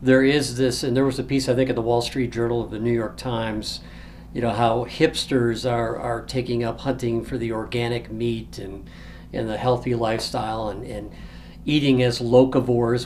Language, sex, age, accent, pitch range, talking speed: English, male, 50-69, American, 115-130 Hz, 200 wpm